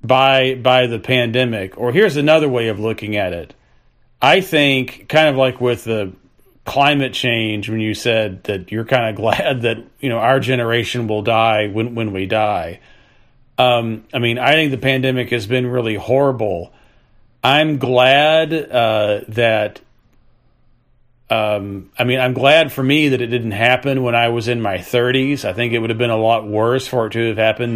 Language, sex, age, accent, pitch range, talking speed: English, male, 40-59, American, 110-130 Hz, 185 wpm